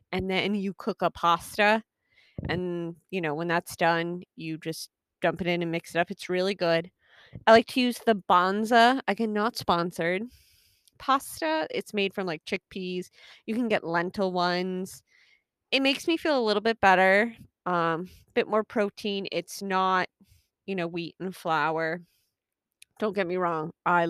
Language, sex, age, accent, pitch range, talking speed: English, female, 20-39, American, 170-215 Hz, 170 wpm